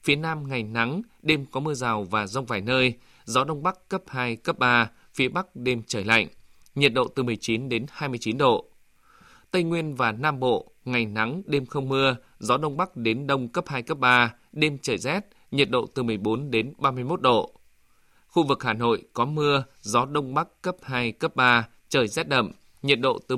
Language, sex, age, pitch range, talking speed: Vietnamese, male, 20-39, 120-150 Hz, 205 wpm